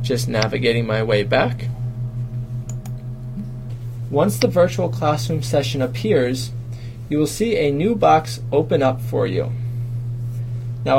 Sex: male